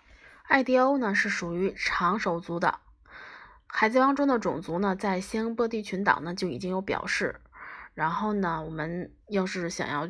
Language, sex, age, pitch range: Chinese, female, 20-39, 175-225 Hz